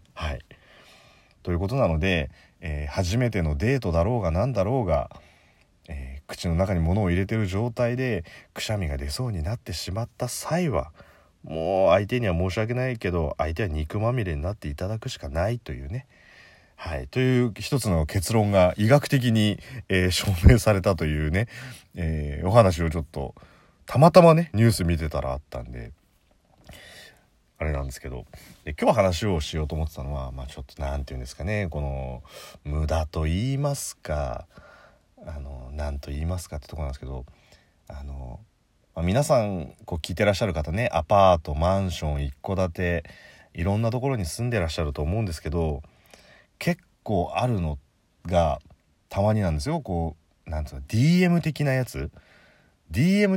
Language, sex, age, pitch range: Japanese, male, 30-49, 75-115 Hz